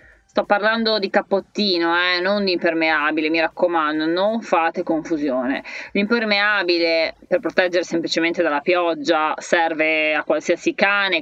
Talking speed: 125 wpm